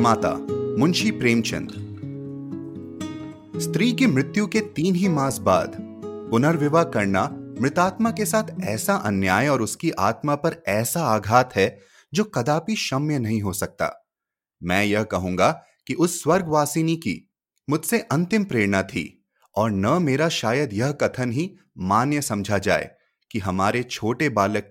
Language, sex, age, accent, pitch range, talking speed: Hindi, male, 30-49, native, 105-165 Hz, 135 wpm